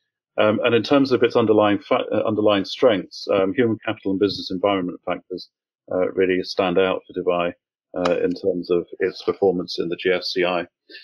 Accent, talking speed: British, 175 wpm